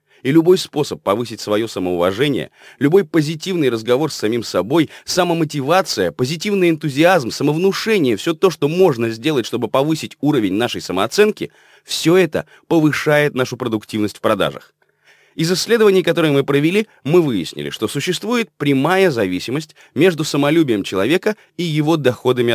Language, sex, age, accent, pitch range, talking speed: Russian, male, 30-49, native, 120-175 Hz, 135 wpm